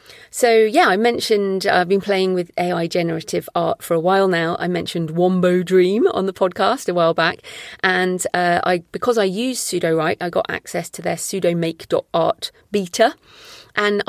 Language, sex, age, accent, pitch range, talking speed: English, female, 40-59, British, 170-210 Hz, 175 wpm